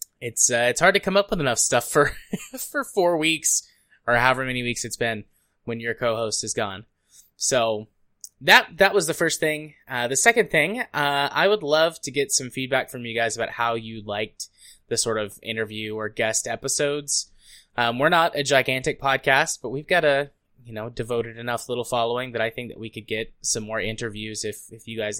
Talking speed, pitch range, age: 210 wpm, 110-130 Hz, 20-39